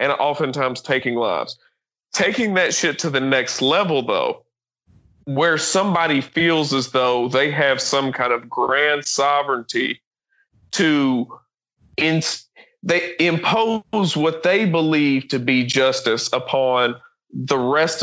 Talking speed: 120 wpm